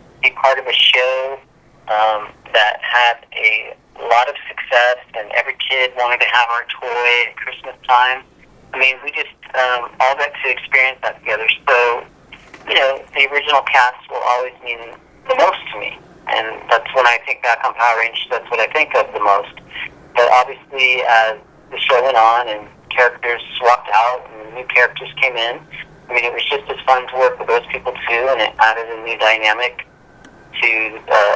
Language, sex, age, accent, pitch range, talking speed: English, male, 40-59, American, 110-130 Hz, 190 wpm